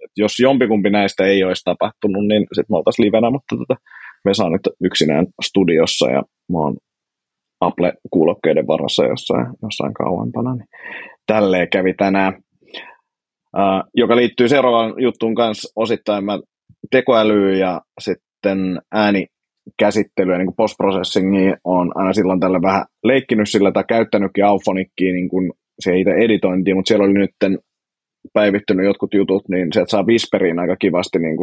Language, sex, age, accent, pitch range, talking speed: Finnish, male, 30-49, native, 95-110 Hz, 135 wpm